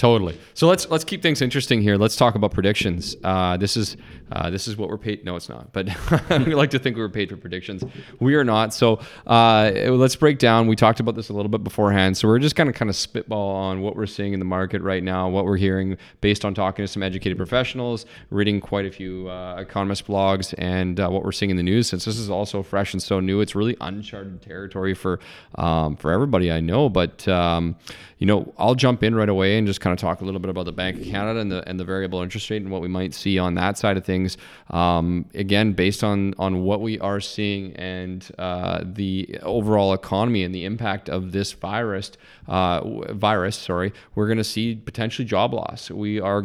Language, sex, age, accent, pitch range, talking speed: English, male, 30-49, American, 95-110 Hz, 235 wpm